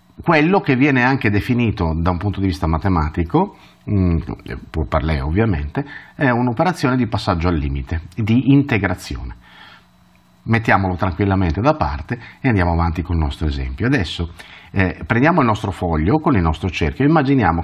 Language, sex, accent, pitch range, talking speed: Italian, male, native, 85-125 Hz, 155 wpm